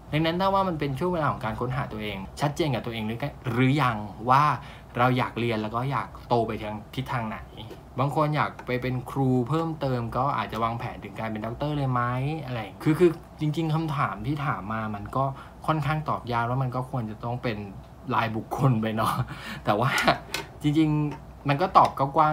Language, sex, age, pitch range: Thai, male, 20-39, 110-145 Hz